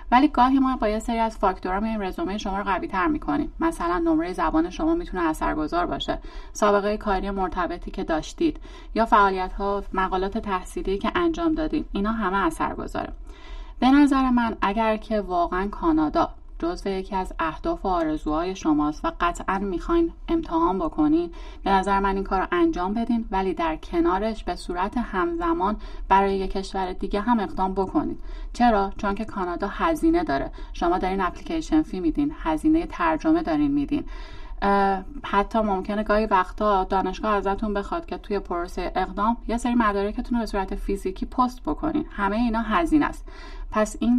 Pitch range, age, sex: 200-330 Hz, 30-49, female